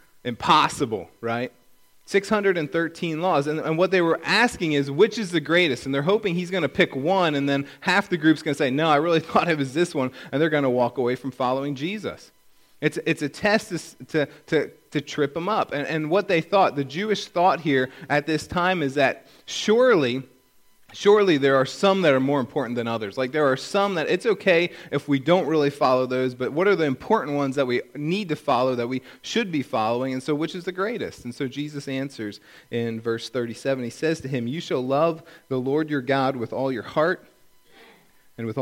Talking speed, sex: 220 wpm, male